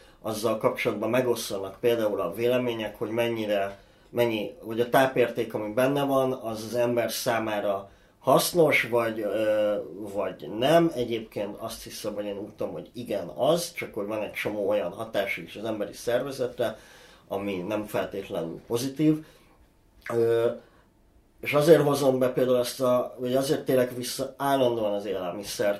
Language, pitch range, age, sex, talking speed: Hungarian, 105-130 Hz, 30-49, male, 140 wpm